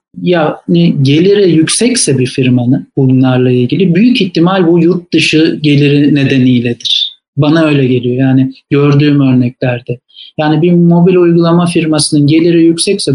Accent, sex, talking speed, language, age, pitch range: native, male, 125 wpm, Turkish, 50-69, 145-185 Hz